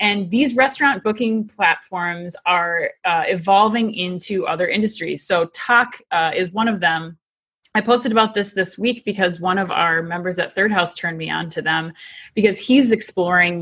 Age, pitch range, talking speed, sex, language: 20-39, 170-200 Hz, 175 wpm, female, English